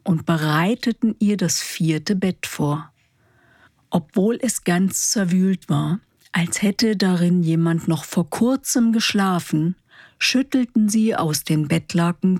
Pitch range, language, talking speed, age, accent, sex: 160-200 Hz, German, 120 wpm, 50-69, German, female